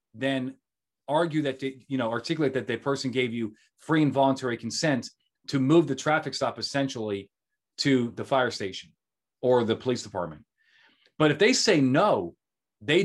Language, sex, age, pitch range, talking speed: English, male, 30-49, 115-150 Hz, 165 wpm